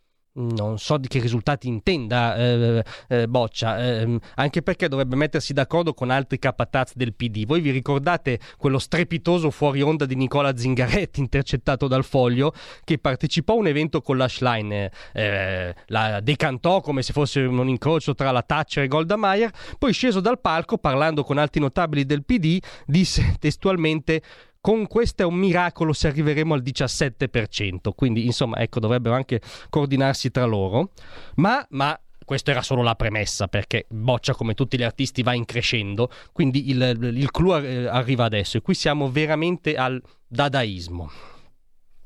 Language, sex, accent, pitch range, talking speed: Italian, male, native, 120-160 Hz, 160 wpm